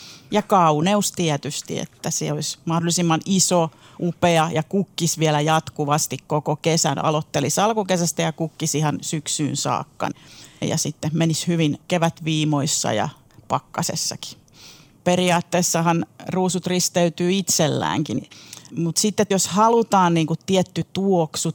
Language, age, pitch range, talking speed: Finnish, 40-59, 155-180 Hz, 115 wpm